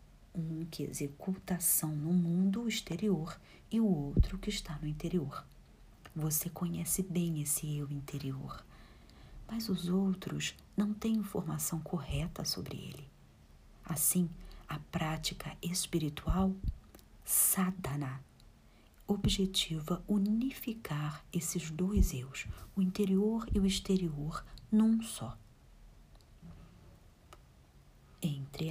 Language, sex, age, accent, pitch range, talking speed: Portuguese, female, 50-69, Brazilian, 145-185 Hz, 100 wpm